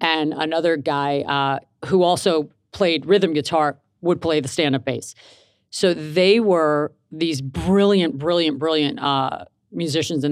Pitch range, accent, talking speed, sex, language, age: 145-180 Hz, American, 140 wpm, female, English, 40-59